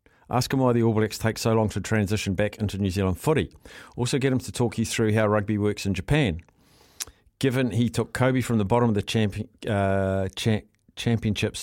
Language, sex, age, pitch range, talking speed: English, male, 50-69, 100-120 Hz, 210 wpm